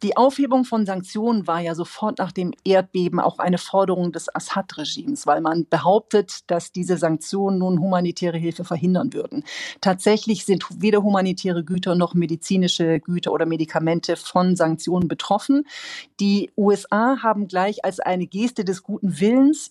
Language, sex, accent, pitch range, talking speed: German, female, German, 175-215 Hz, 150 wpm